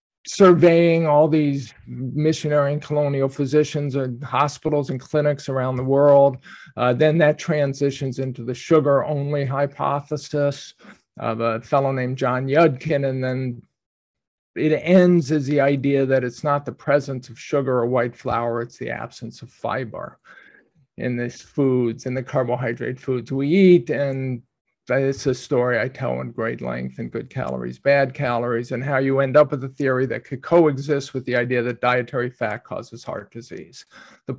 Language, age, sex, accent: English, 50-69, male, American